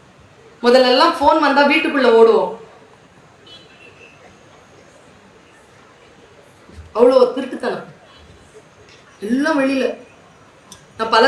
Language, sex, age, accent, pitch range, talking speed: Tamil, female, 30-49, native, 255-345 Hz, 60 wpm